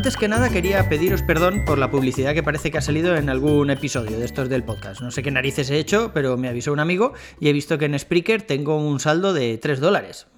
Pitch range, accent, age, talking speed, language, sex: 135-160 Hz, Spanish, 30-49, 255 wpm, Spanish, male